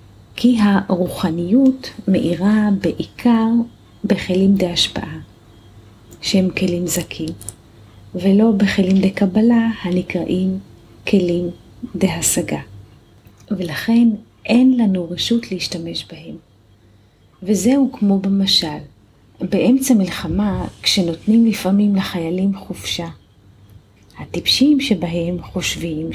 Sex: female